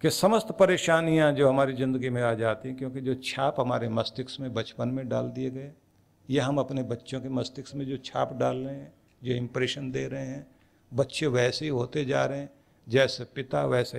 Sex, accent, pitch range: male, native, 110-150 Hz